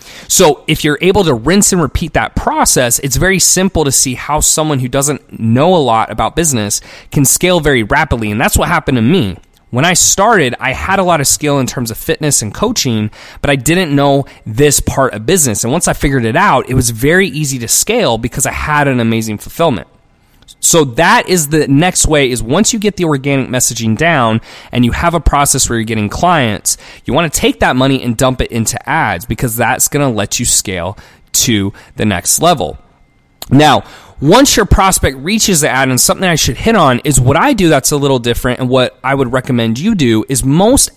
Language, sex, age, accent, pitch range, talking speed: English, male, 20-39, American, 115-160 Hz, 220 wpm